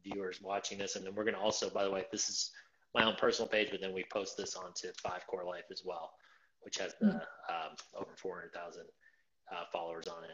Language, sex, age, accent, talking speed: English, male, 30-49, American, 230 wpm